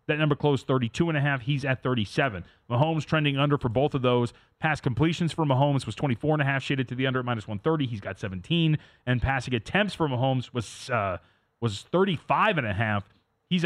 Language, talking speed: English, 170 wpm